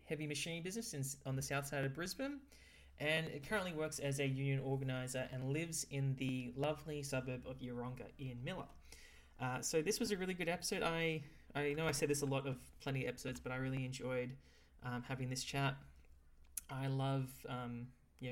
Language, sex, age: English, male, 20-39